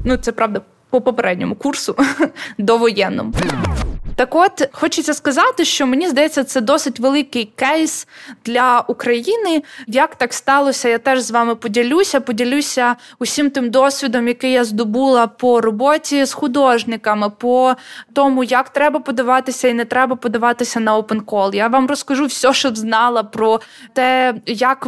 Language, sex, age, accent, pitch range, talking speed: Ukrainian, female, 20-39, native, 235-270 Hz, 145 wpm